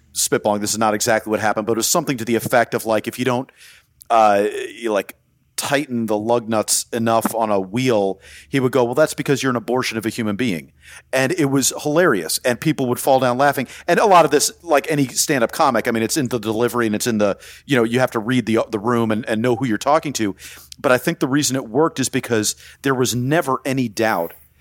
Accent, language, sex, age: American, English, male, 40-59